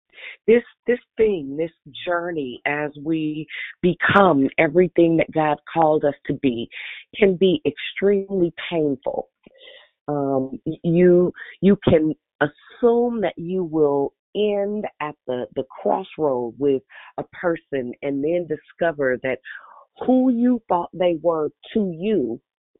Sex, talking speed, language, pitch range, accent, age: female, 120 wpm, English, 140-180 Hz, American, 40-59